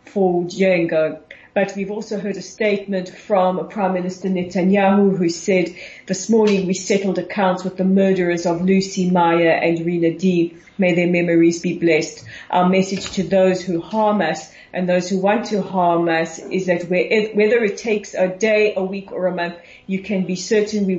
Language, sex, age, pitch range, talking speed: English, female, 40-59, 175-195 Hz, 185 wpm